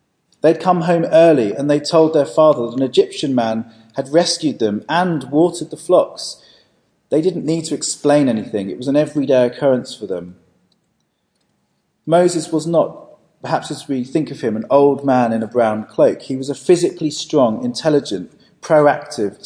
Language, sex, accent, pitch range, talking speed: English, male, British, 125-165 Hz, 175 wpm